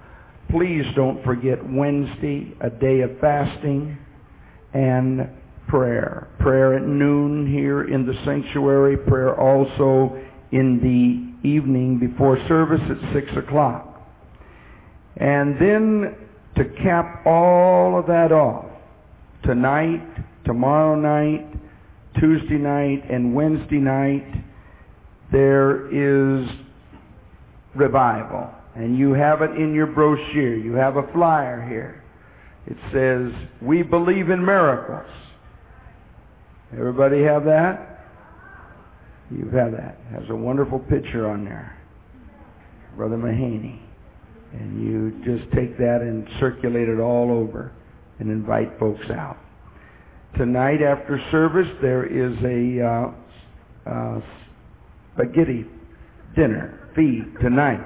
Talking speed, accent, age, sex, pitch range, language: 110 wpm, American, 50-69, male, 115-145 Hz, English